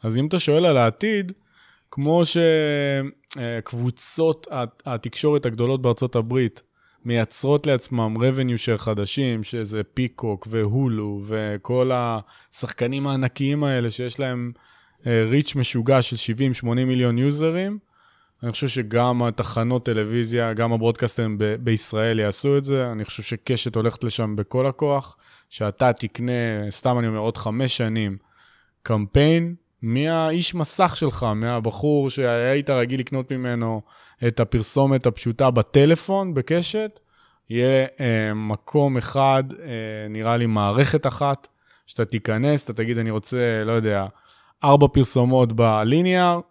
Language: English